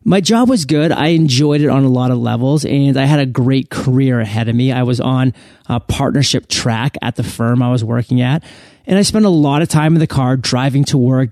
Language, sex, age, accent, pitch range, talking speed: English, male, 30-49, American, 130-160 Hz, 250 wpm